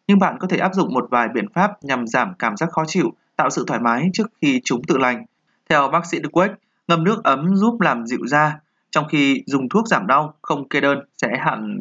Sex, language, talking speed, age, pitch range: male, Vietnamese, 240 wpm, 20-39, 140-195 Hz